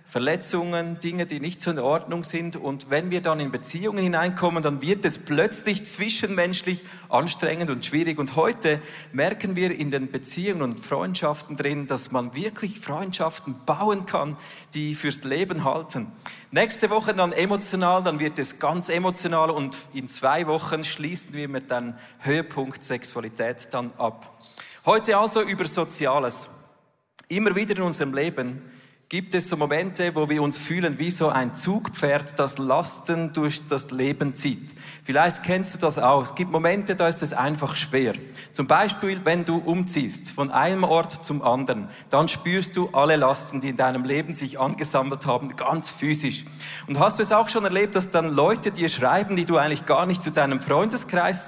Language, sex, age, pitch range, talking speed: German, male, 40-59, 145-180 Hz, 175 wpm